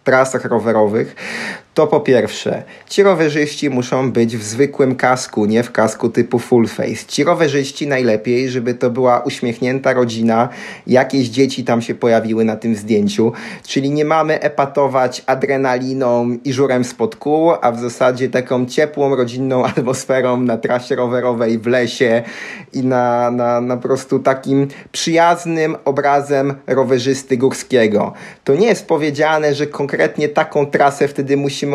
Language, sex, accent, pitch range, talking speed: Polish, male, native, 125-145 Hz, 140 wpm